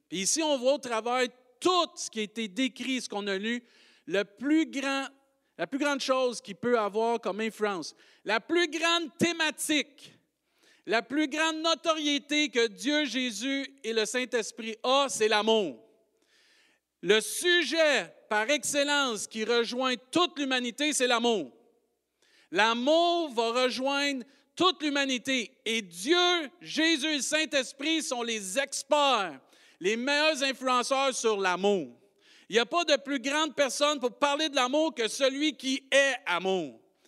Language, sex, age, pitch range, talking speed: French, male, 50-69, 230-295 Hz, 145 wpm